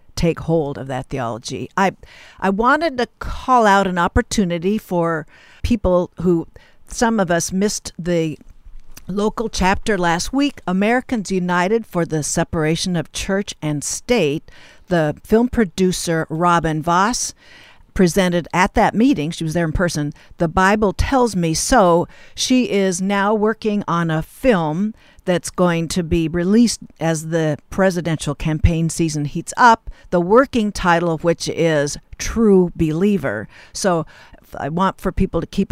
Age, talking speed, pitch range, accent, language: 60-79, 145 wpm, 160-210 Hz, American, English